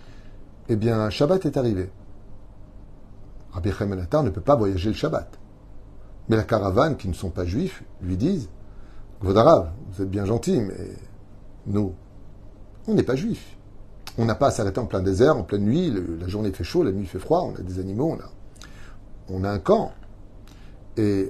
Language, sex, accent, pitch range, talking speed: French, male, French, 100-110 Hz, 185 wpm